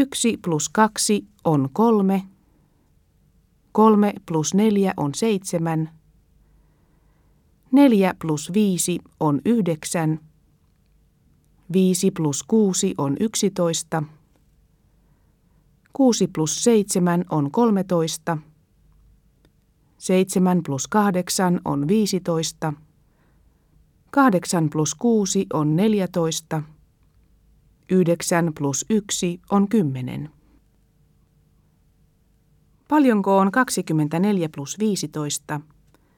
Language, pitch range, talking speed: Russian, 150-200 Hz, 75 wpm